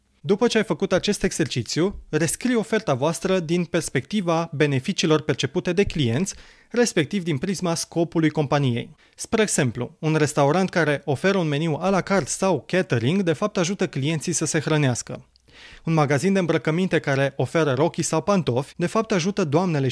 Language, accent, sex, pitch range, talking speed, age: Romanian, native, male, 145-190 Hz, 160 wpm, 20-39